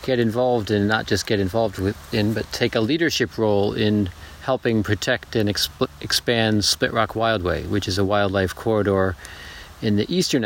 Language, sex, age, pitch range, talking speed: English, male, 40-59, 95-120 Hz, 165 wpm